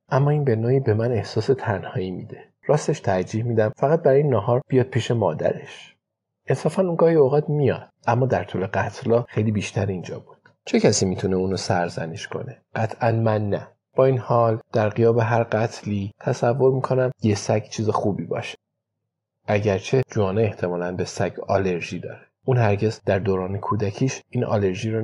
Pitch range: 100-130 Hz